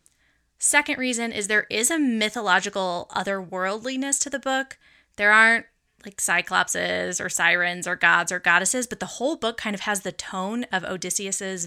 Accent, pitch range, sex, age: American, 185-235 Hz, female, 20-39